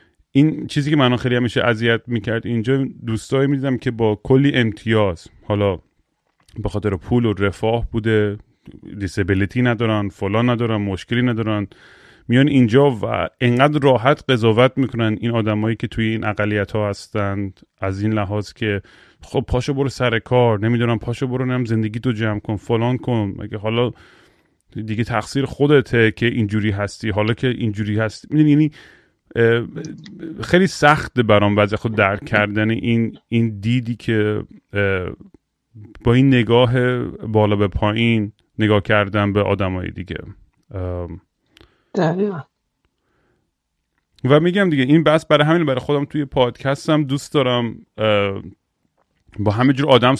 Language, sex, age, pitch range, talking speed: Persian, male, 30-49, 105-125 Hz, 135 wpm